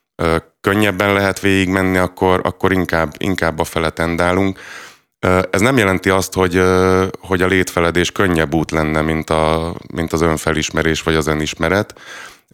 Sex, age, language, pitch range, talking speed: male, 30-49, Hungarian, 80-95 Hz, 135 wpm